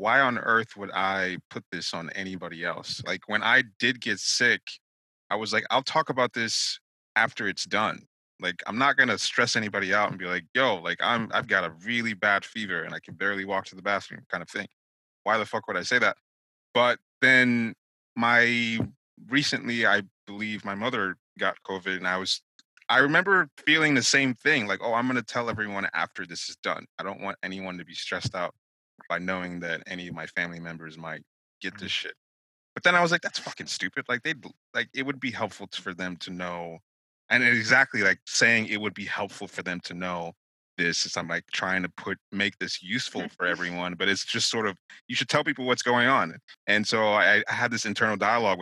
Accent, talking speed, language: American, 215 wpm, English